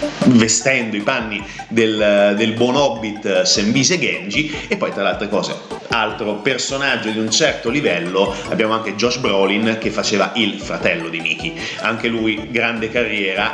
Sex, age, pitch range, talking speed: male, 30-49, 100-120 Hz, 155 wpm